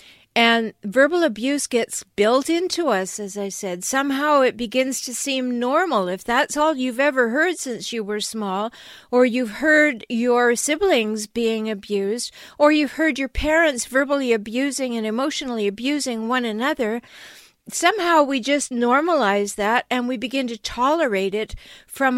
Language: English